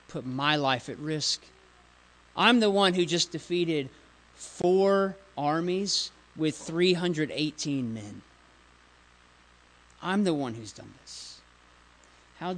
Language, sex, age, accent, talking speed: English, male, 40-59, American, 110 wpm